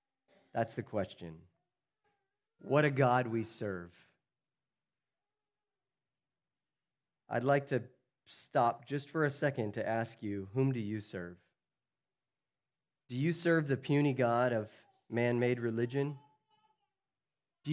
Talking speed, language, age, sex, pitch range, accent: 110 wpm, English, 30-49, male, 120-155 Hz, American